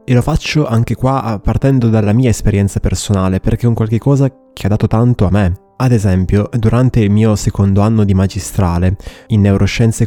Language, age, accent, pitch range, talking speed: Italian, 20-39, native, 105-125 Hz, 190 wpm